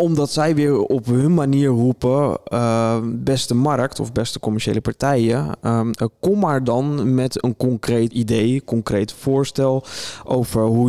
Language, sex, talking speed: Dutch, male, 145 wpm